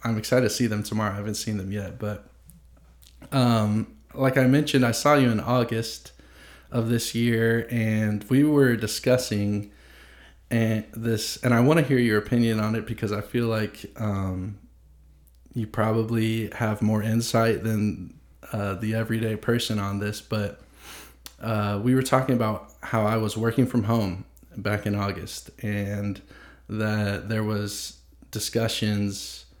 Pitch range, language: 100-115 Hz, English